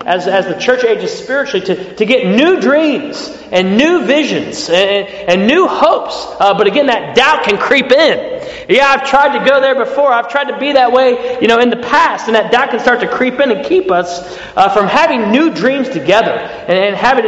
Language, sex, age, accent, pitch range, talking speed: English, male, 30-49, American, 180-255 Hz, 220 wpm